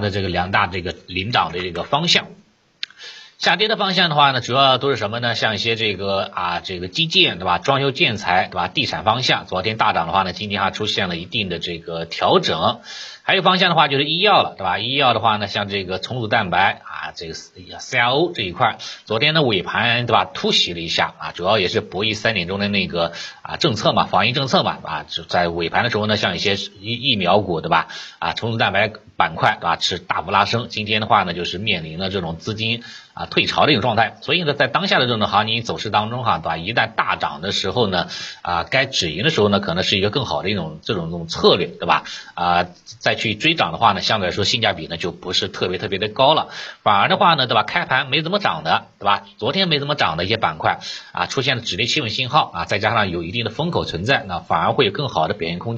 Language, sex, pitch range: Chinese, male, 90-135 Hz